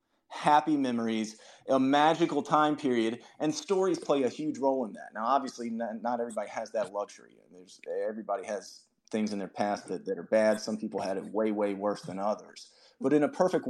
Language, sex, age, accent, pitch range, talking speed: English, male, 30-49, American, 110-155 Hz, 210 wpm